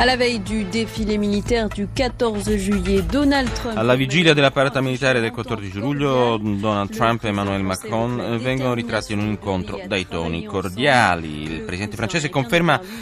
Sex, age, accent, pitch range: male, 30-49, native, 105-140 Hz